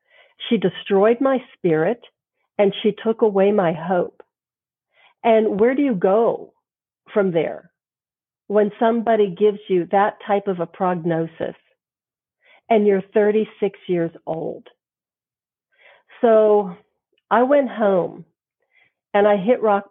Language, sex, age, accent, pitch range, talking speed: English, female, 50-69, American, 180-225 Hz, 120 wpm